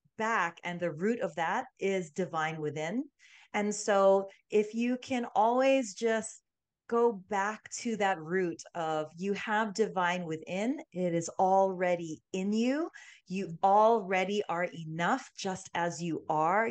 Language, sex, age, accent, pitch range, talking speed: English, female, 30-49, American, 170-220 Hz, 140 wpm